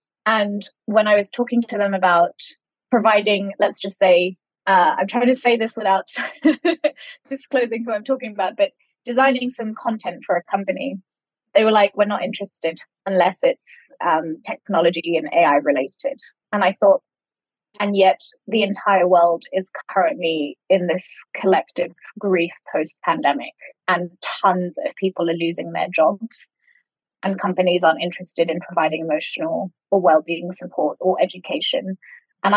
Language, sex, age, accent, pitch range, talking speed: English, female, 20-39, British, 180-235 Hz, 150 wpm